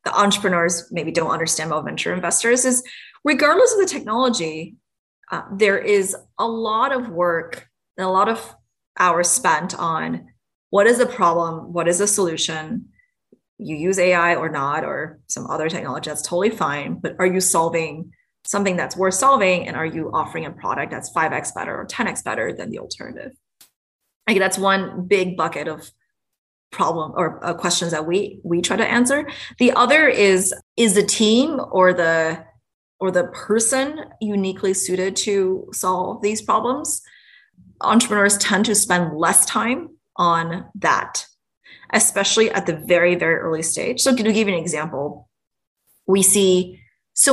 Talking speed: 160 wpm